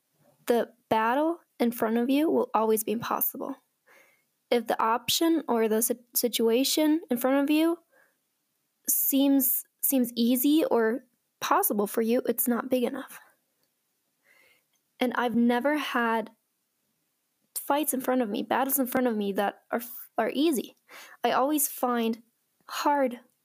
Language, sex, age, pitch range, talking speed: English, female, 10-29, 230-275 Hz, 140 wpm